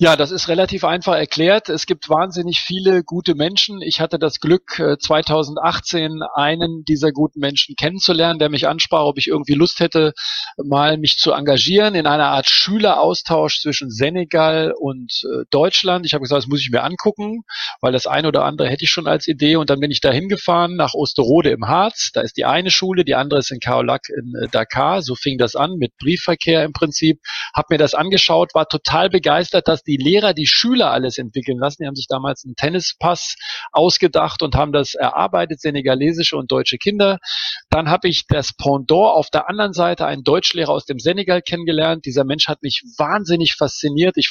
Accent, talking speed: German, 195 wpm